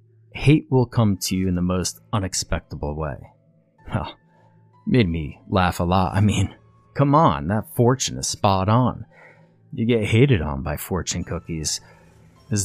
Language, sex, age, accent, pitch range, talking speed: English, male, 30-49, American, 90-120 Hz, 155 wpm